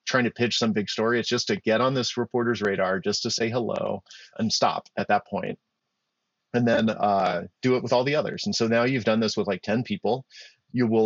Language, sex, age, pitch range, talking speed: English, male, 30-49, 110-130 Hz, 240 wpm